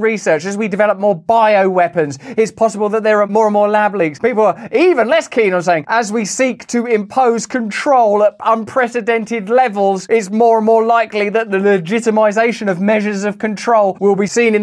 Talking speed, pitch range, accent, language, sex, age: 195 wpm, 155-210 Hz, British, English, male, 30-49